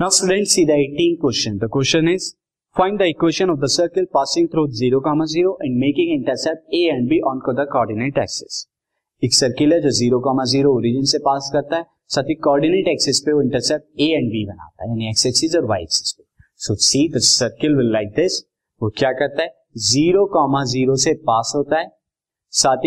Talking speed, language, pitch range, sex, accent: 145 wpm, Hindi, 125-155 Hz, male, native